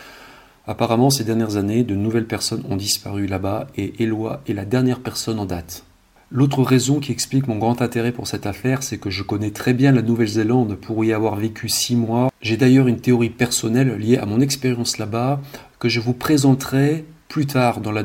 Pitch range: 105-130 Hz